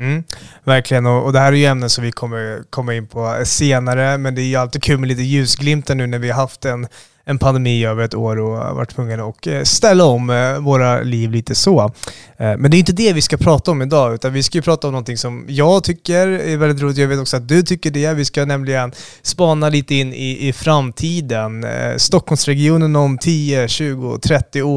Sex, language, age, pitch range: male, Swedish, 20-39, 125-150 Hz